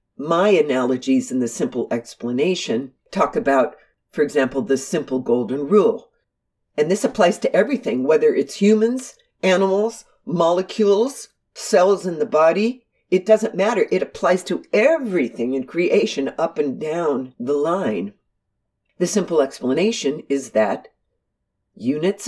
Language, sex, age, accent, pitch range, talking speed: English, female, 60-79, American, 130-220 Hz, 130 wpm